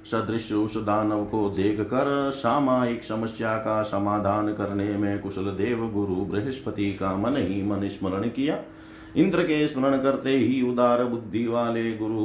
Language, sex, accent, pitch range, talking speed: Hindi, male, native, 105-125 Hz, 155 wpm